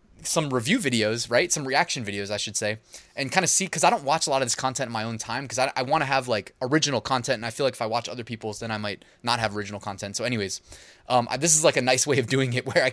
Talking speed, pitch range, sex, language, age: 310 wpm, 115-150 Hz, male, English, 20-39